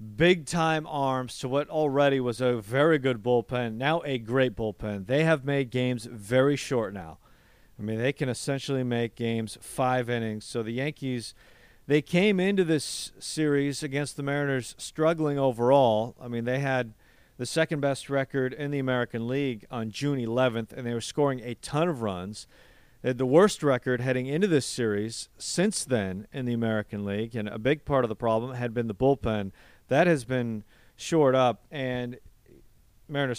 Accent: American